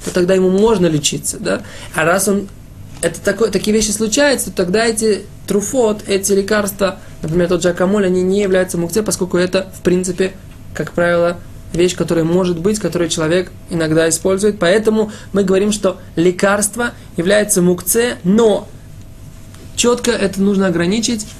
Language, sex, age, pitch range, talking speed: Russian, male, 20-39, 155-195 Hz, 150 wpm